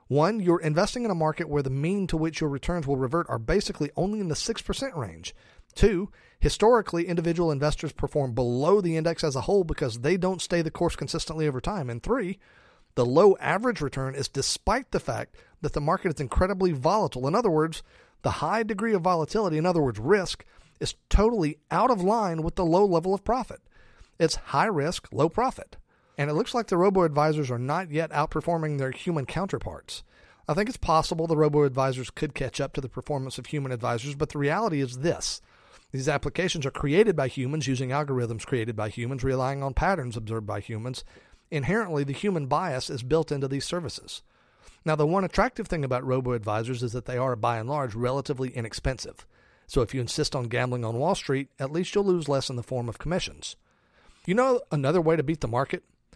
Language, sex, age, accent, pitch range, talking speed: English, male, 40-59, American, 135-180 Hz, 200 wpm